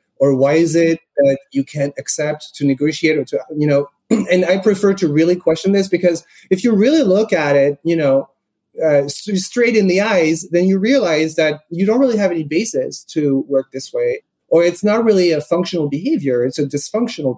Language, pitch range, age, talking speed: English, 150-195 Hz, 30-49, 205 wpm